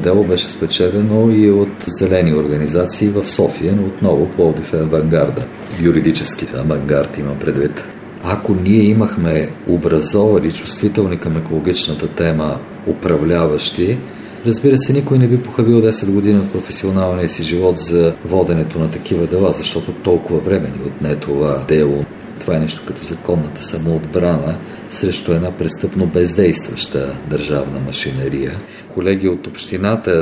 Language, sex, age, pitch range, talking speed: Bulgarian, male, 50-69, 80-105 Hz, 135 wpm